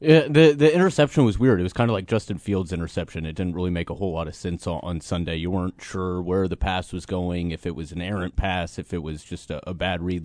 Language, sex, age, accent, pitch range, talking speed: English, male, 30-49, American, 90-105 Hz, 280 wpm